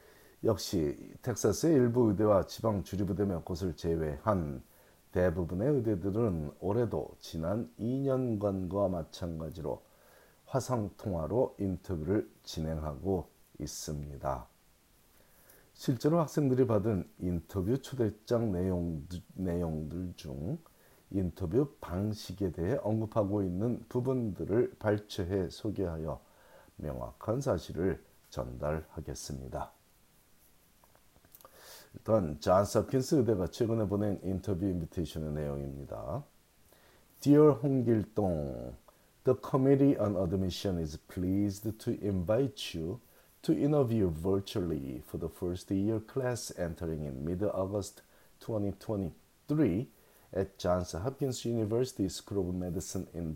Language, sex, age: Korean, male, 40-59